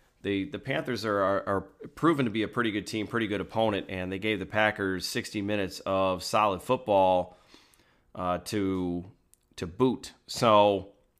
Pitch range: 100-125 Hz